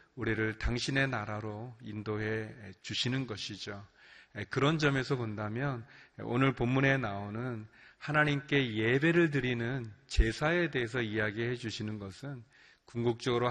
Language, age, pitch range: Korean, 30-49, 115-140 Hz